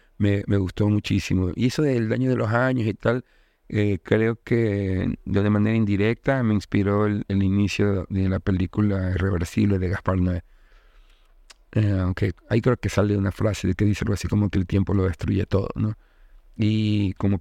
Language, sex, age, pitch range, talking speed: Spanish, male, 50-69, 95-110 Hz, 185 wpm